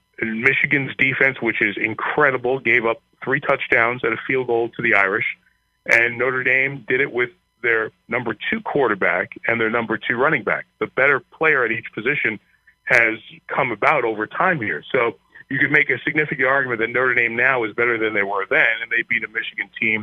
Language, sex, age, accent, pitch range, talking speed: English, male, 30-49, American, 115-145 Hz, 200 wpm